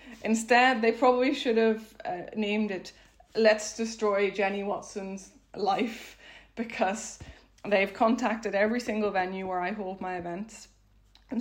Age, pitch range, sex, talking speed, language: 20-39, 185-220 Hz, female, 130 wpm, English